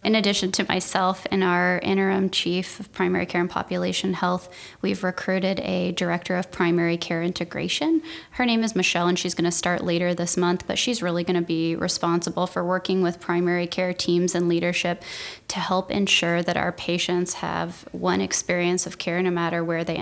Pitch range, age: 170-185 Hz, 20-39